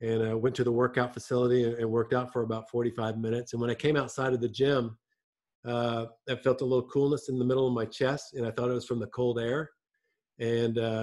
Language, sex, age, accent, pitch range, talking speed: English, male, 50-69, American, 115-130 Hz, 245 wpm